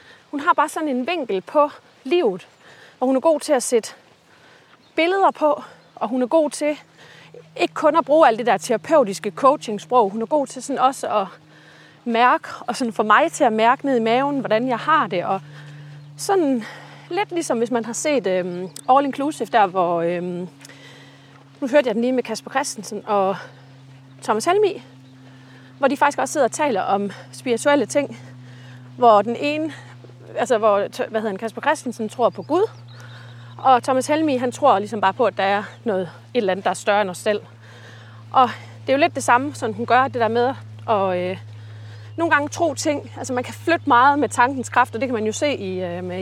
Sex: female